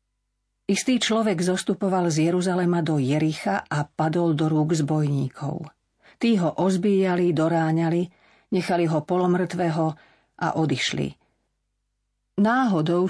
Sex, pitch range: female, 160-190 Hz